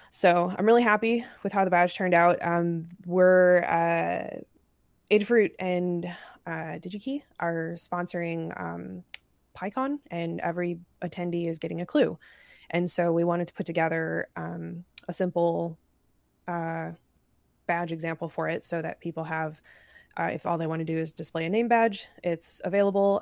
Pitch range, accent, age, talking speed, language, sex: 165-180 Hz, American, 20-39, 160 wpm, English, female